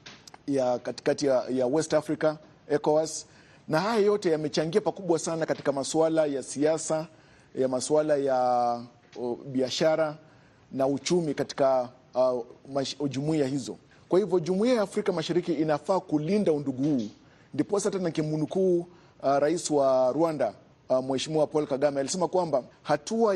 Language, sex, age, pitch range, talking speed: Swahili, male, 50-69, 140-170 Hz, 130 wpm